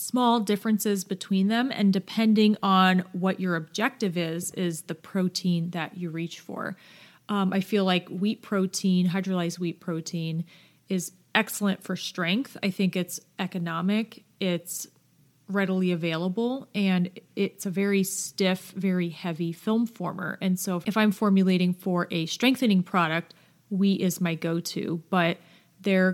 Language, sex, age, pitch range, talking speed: English, female, 30-49, 175-205 Hz, 140 wpm